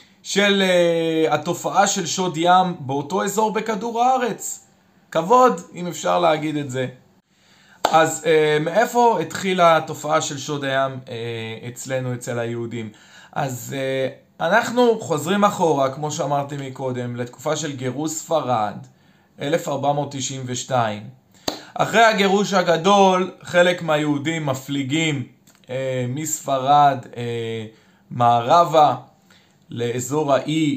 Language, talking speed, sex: Hebrew, 105 wpm, male